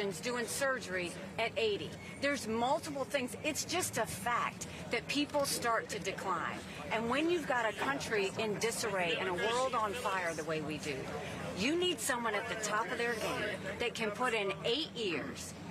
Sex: female